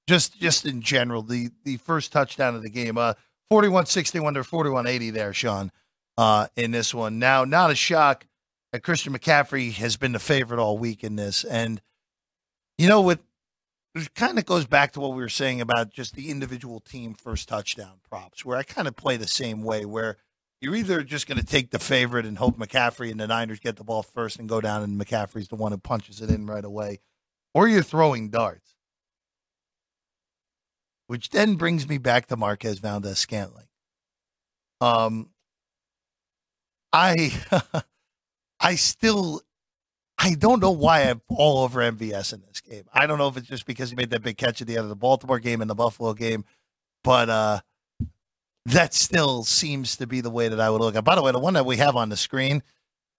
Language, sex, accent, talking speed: English, male, American, 195 wpm